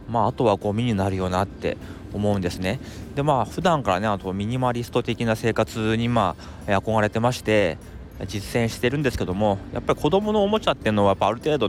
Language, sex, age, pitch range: Japanese, male, 20-39, 95-120 Hz